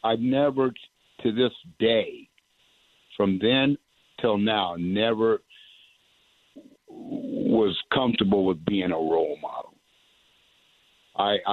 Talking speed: 95 wpm